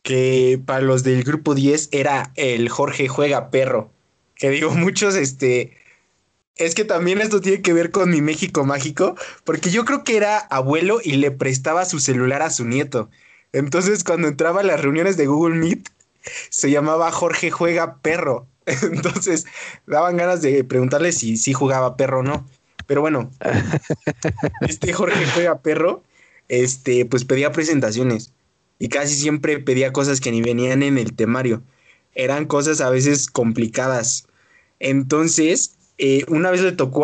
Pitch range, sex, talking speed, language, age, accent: 130-160 Hz, male, 155 wpm, Spanish, 20-39, Mexican